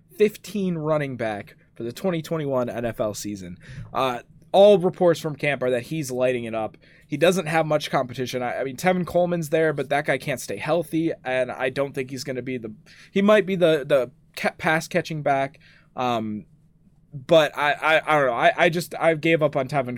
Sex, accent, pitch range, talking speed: male, American, 120-160 Hz, 205 wpm